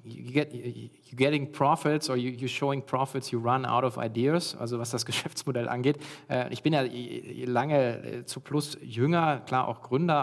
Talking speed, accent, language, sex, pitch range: 170 wpm, German, German, male, 125-150 Hz